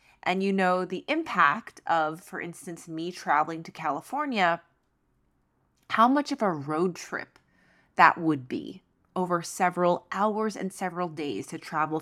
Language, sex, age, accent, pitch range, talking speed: English, female, 30-49, American, 165-210 Hz, 145 wpm